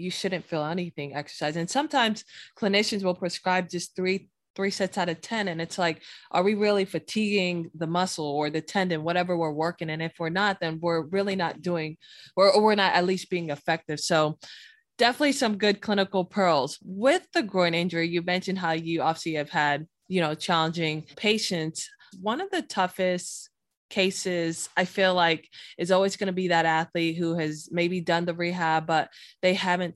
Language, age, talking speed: English, 20-39, 190 wpm